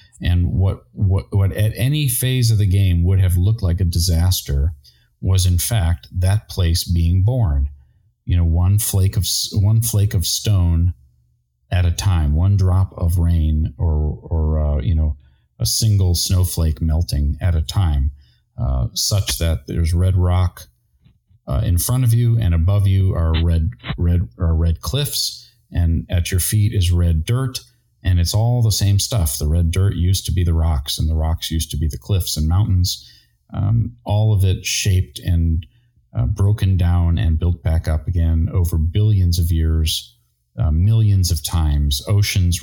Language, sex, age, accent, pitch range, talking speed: English, male, 40-59, American, 80-100 Hz, 175 wpm